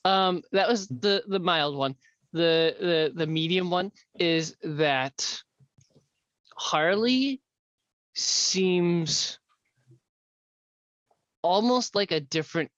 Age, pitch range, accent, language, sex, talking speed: 20-39, 140-190 Hz, American, English, male, 90 wpm